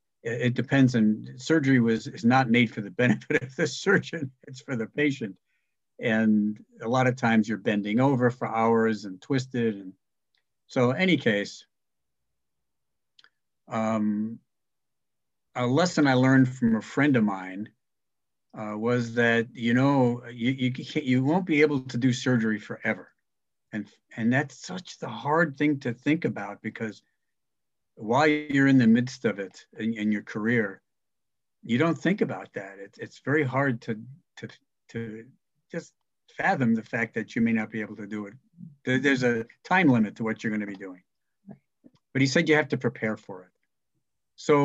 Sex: male